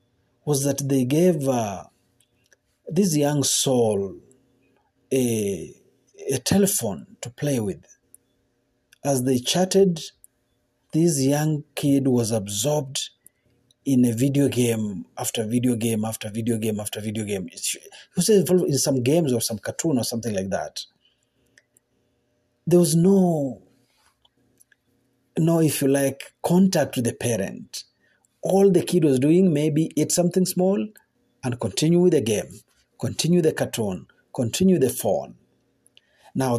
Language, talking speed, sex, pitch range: Swahili, 130 wpm, male, 120-175 Hz